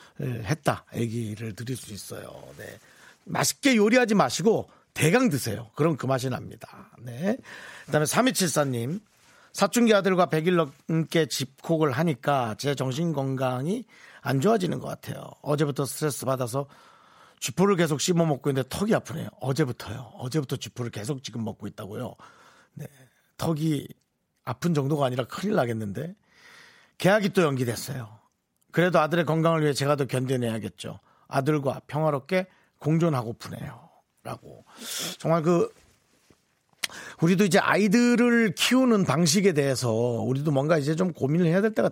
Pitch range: 130-175 Hz